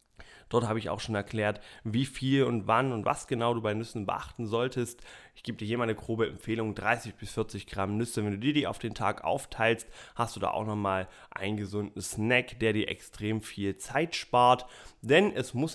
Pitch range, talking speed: 110-135 Hz, 215 wpm